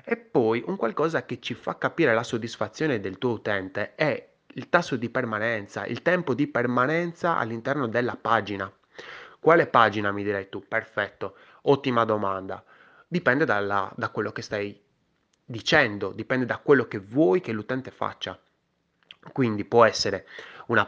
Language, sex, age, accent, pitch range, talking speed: Italian, male, 20-39, native, 100-120 Hz, 145 wpm